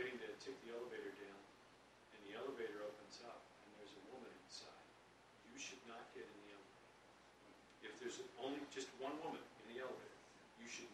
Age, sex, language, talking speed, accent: 50-69, male, English, 180 wpm, American